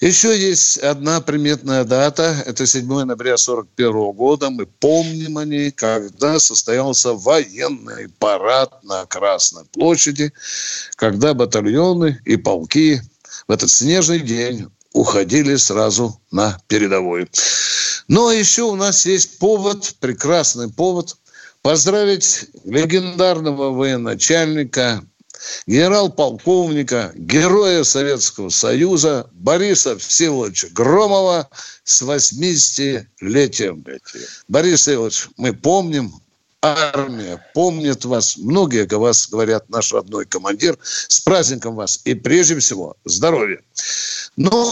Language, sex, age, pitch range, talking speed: Russian, male, 60-79, 120-170 Hz, 100 wpm